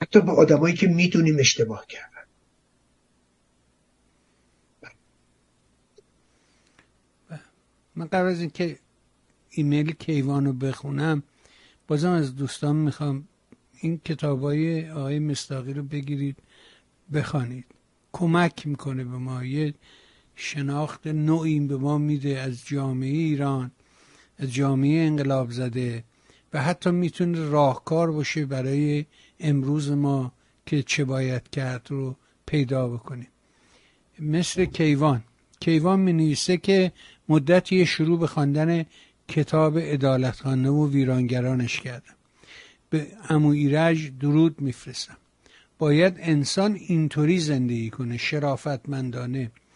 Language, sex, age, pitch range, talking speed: Persian, male, 60-79, 130-160 Hz, 105 wpm